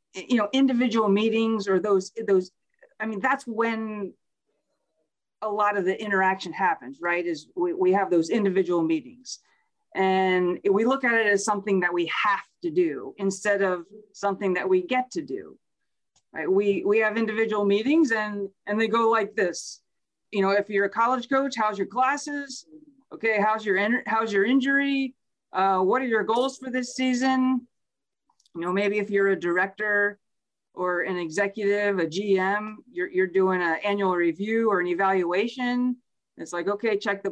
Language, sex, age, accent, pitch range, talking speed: English, female, 40-59, American, 195-250 Hz, 170 wpm